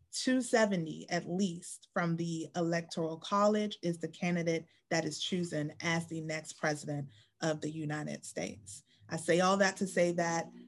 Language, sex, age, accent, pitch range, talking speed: English, female, 30-49, American, 155-175 Hz, 155 wpm